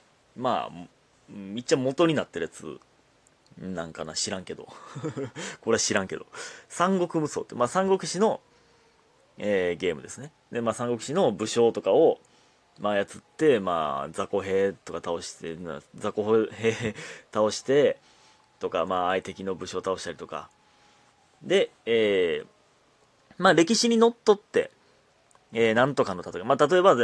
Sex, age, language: male, 30-49, Japanese